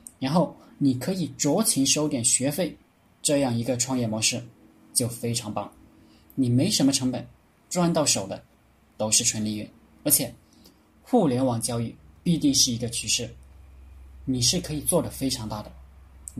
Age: 20-39